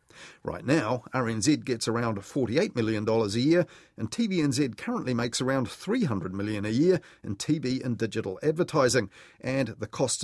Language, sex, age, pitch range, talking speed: English, male, 40-59, 110-145 Hz, 150 wpm